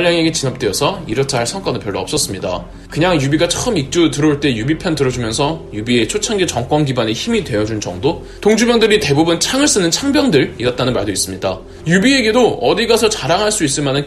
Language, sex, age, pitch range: Korean, male, 20-39, 135-210 Hz